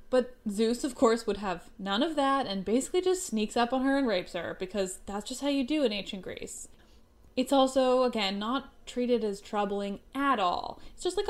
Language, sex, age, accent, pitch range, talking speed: English, female, 10-29, American, 210-290 Hz, 210 wpm